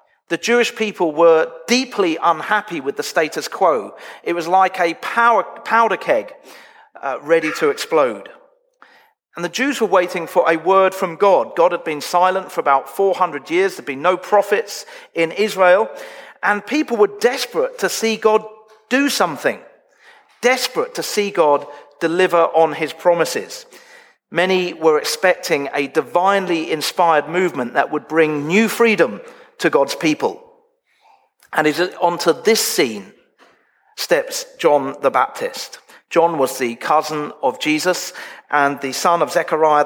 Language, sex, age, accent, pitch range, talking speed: English, male, 40-59, British, 165-255 Hz, 145 wpm